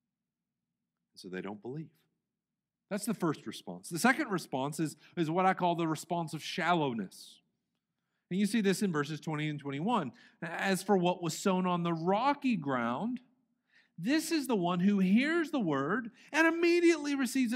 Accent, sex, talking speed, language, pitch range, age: American, male, 165 wpm, English, 150-220 Hz, 40-59